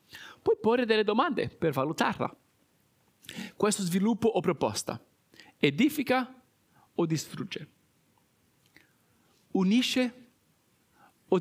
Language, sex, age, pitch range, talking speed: Italian, male, 50-69, 165-225 Hz, 80 wpm